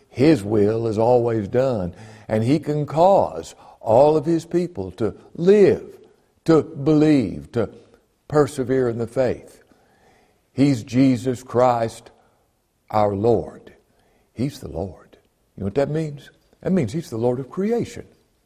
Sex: male